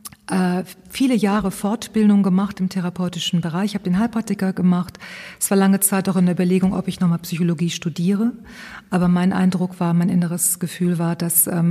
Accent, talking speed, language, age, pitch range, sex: German, 175 wpm, German, 40-59, 175-195 Hz, female